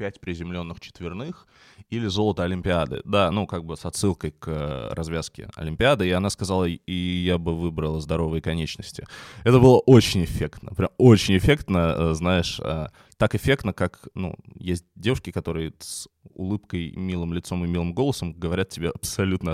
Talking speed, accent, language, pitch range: 150 wpm, native, Russian, 80-100 Hz